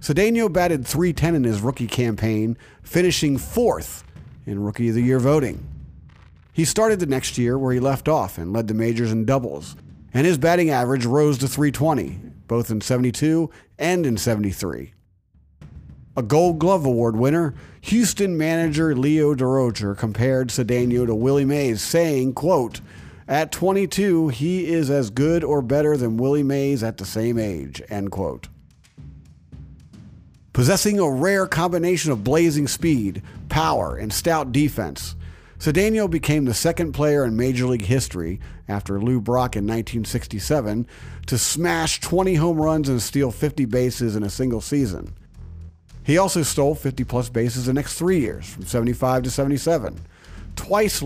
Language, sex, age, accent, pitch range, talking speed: English, male, 50-69, American, 110-155 Hz, 150 wpm